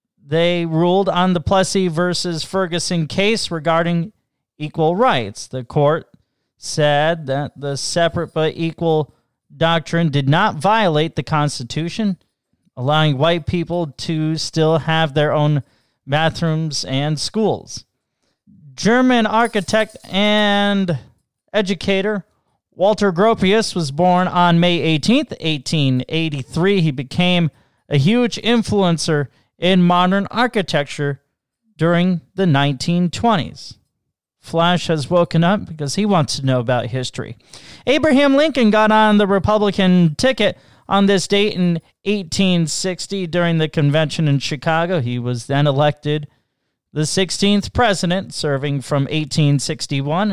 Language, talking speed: English, 115 wpm